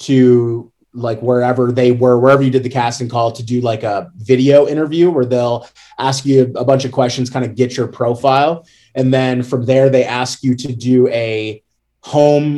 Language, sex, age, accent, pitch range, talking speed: English, male, 20-39, American, 120-140 Hz, 195 wpm